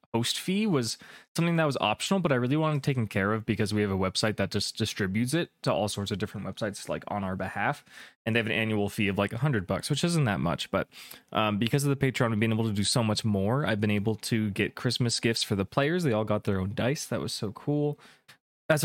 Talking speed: 265 wpm